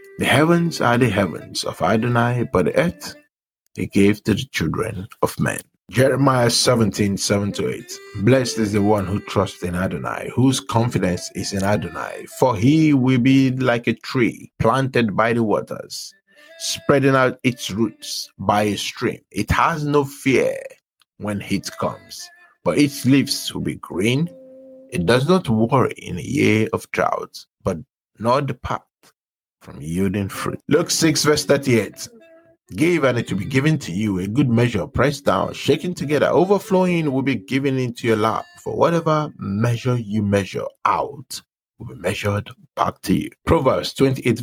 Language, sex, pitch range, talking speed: English, male, 105-145 Hz, 160 wpm